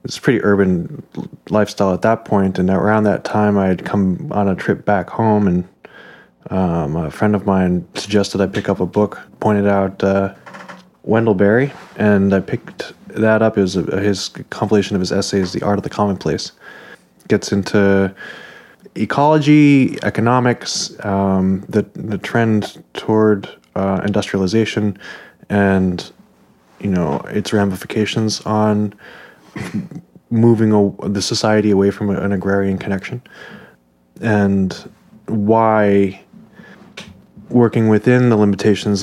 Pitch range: 95-110 Hz